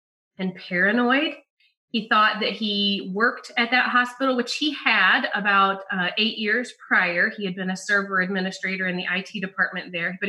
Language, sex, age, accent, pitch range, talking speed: English, female, 30-49, American, 180-220 Hz, 175 wpm